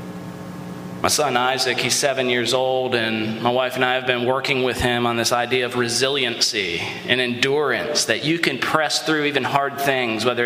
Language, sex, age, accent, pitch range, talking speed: English, male, 30-49, American, 120-150 Hz, 190 wpm